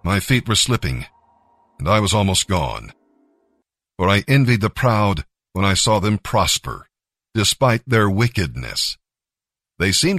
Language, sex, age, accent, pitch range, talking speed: English, male, 50-69, American, 95-120 Hz, 140 wpm